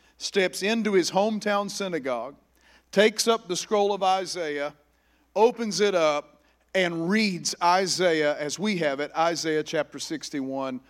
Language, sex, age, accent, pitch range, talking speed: English, male, 50-69, American, 140-195 Hz, 130 wpm